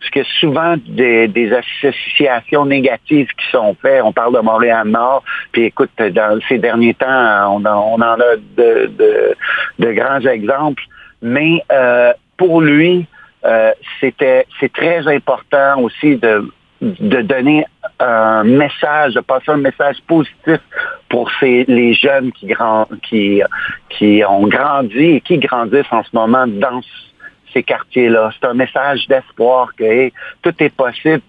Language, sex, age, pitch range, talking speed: French, male, 60-79, 115-150 Hz, 155 wpm